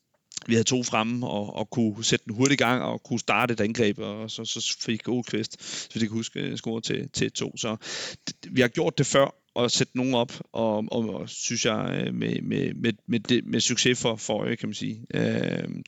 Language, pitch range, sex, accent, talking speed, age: Danish, 110-125 Hz, male, native, 230 wpm, 30-49